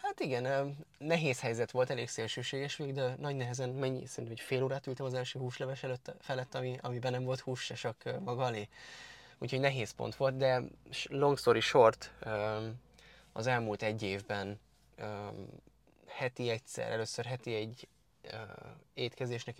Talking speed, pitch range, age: 145 wpm, 110-130 Hz, 20-39